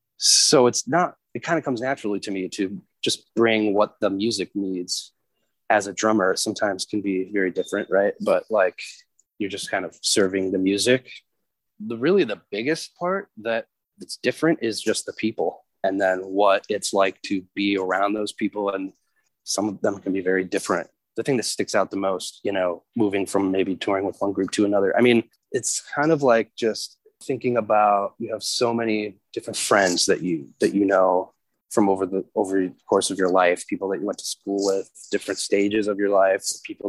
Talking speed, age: 205 wpm, 20-39